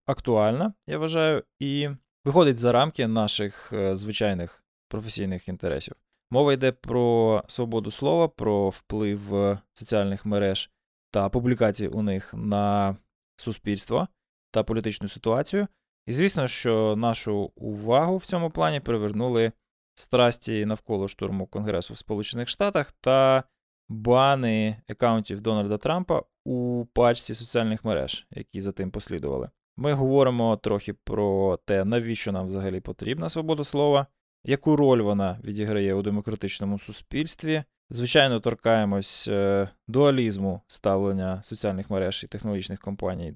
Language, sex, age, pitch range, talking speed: Ukrainian, male, 20-39, 100-125 Hz, 120 wpm